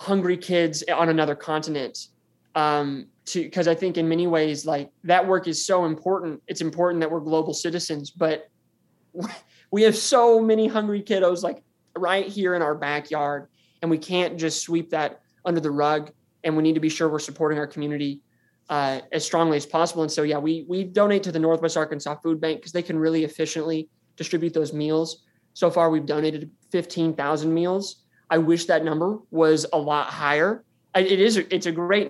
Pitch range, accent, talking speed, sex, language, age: 155-175 Hz, American, 190 wpm, male, English, 20-39